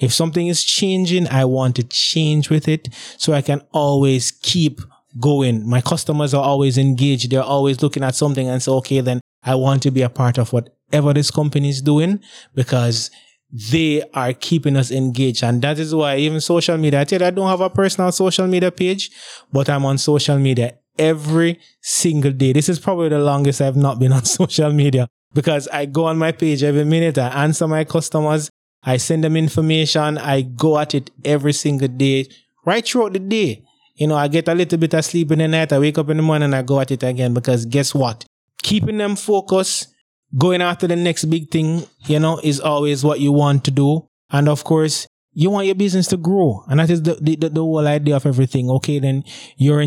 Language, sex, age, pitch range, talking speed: English, male, 20-39, 135-160 Hz, 215 wpm